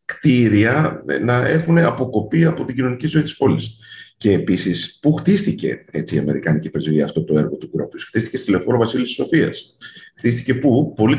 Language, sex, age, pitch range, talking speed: Greek, male, 50-69, 95-145 Hz, 170 wpm